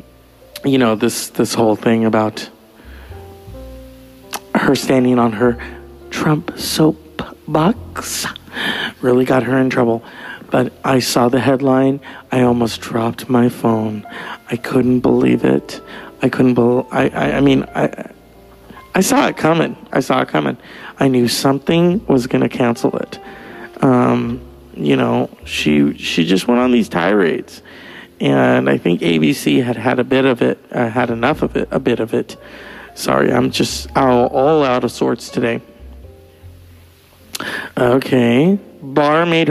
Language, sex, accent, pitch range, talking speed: English, male, American, 110-150 Hz, 145 wpm